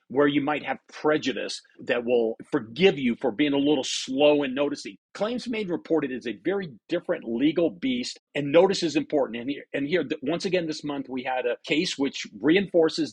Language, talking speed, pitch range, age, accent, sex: English, 195 wpm, 140-190 Hz, 50-69, American, male